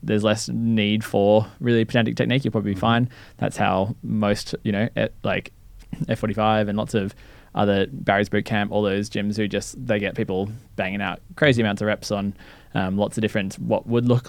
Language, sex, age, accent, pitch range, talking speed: English, male, 20-39, Australian, 95-110 Hz, 195 wpm